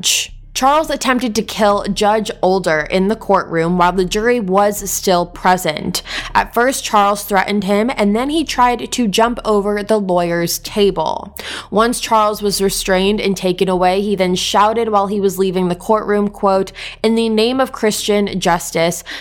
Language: English